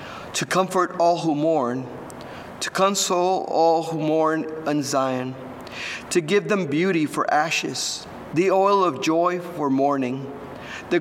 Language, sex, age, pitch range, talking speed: English, male, 50-69, 145-195 Hz, 135 wpm